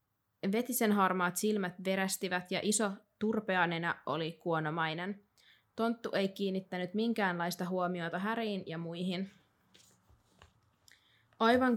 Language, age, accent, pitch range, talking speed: Finnish, 20-39, native, 170-205 Hz, 90 wpm